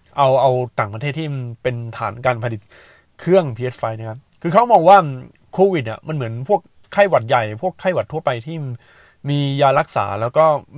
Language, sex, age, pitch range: Thai, male, 20-39, 120-160 Hz